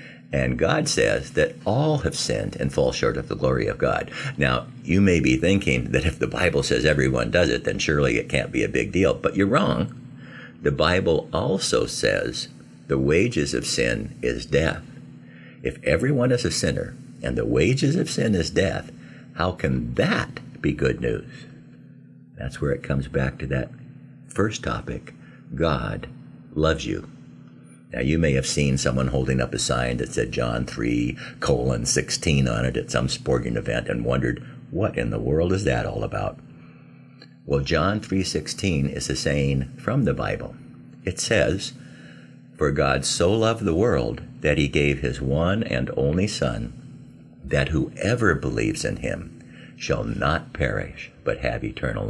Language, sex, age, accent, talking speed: English, male, 50-69, American, 170 wpm